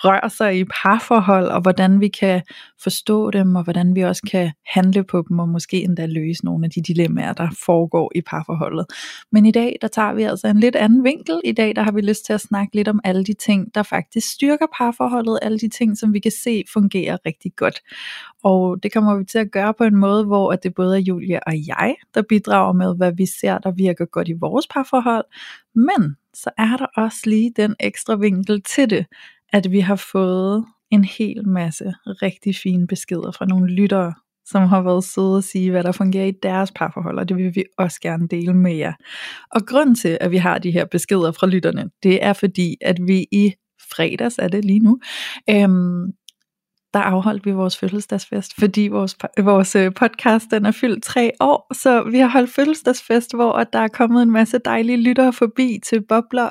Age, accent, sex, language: 20-39, native, female, Danish